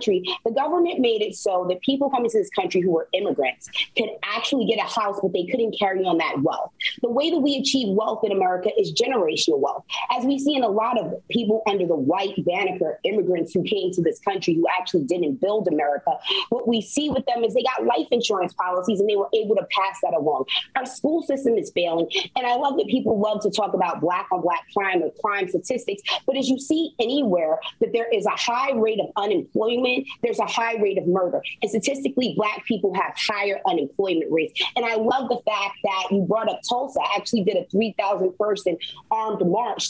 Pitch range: 180-255 Hz